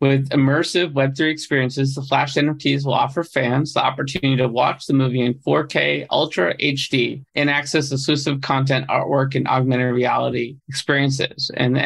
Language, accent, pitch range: English, American, 130-145 Hz